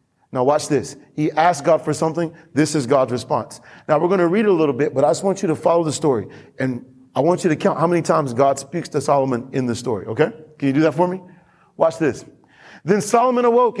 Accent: American